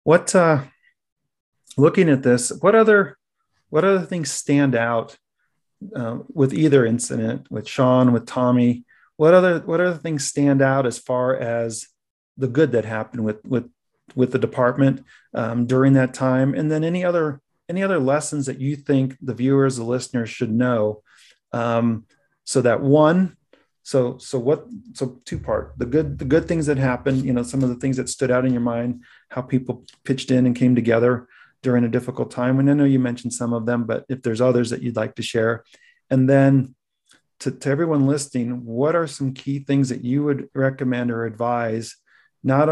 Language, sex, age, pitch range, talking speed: English, male, 40-59, 120-140 Hz, 190 wpm